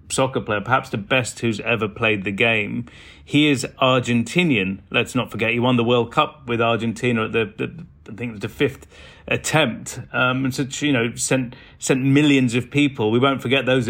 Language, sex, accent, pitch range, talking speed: English, male, British, 120-135 Hz, 205 wpm